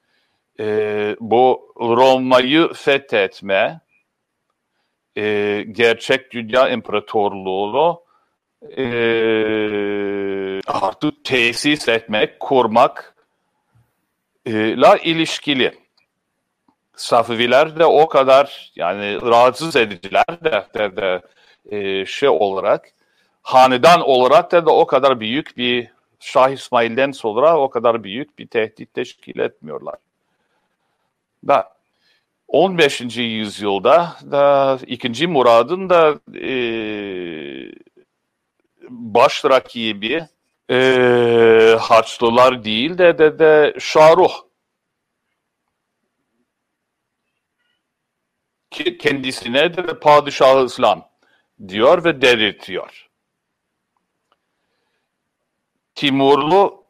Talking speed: 75 wpm